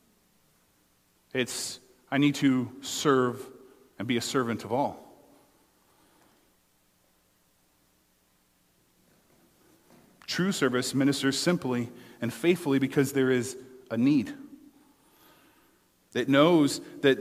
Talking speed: 85 wpm